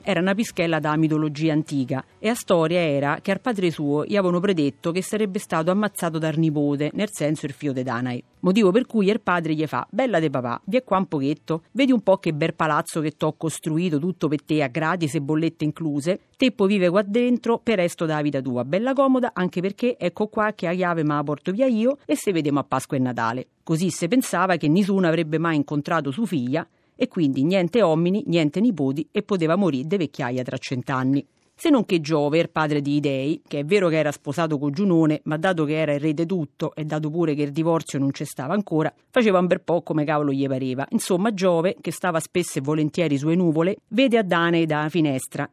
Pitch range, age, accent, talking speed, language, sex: 150-195 Hz, 40-59, native, 225 wpm, Italian, female